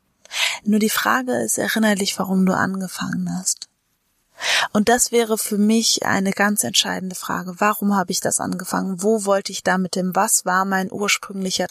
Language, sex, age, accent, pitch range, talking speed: German, female, 20-39, German, 190-235 Hz, 170 wpm